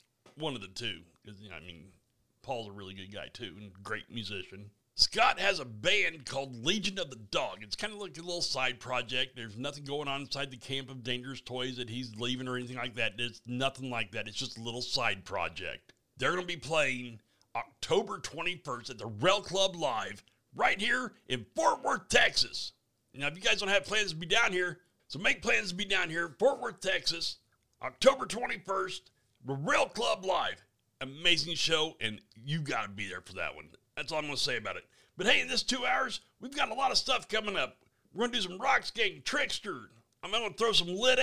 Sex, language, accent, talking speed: male, English, American, 225 wpm